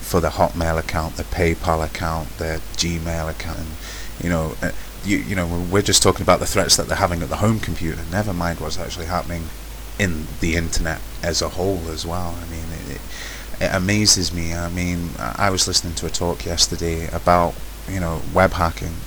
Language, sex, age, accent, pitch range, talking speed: English, male, 30-49, British, 80-90 Hz, 200 wpm